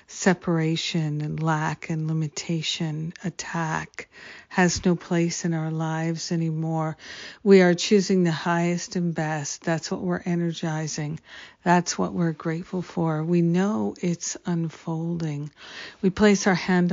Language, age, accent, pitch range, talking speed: English, 50-69, American, 160-180 Hz, 130 wpm